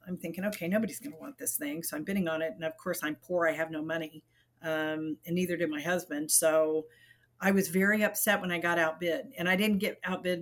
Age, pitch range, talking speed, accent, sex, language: 40-59, 160-195 Hz, 250 wpm, American, female, English